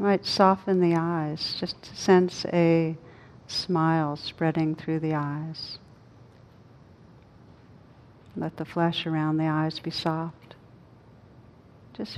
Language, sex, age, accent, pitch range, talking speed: English, female, 60-79, American, 145-170 Hz, 110 wpm